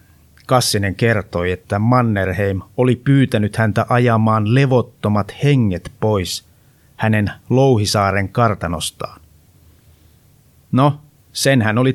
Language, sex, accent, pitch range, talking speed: Finnish, male, native, 100-125 Hz, 90 wpm